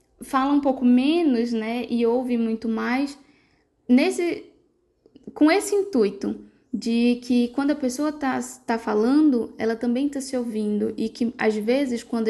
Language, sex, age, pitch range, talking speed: Portuguese, female, 10-29, 225-275 Hz, 140 wpm